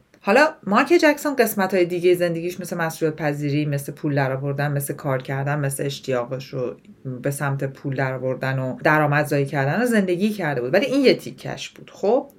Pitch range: 155-190 Hz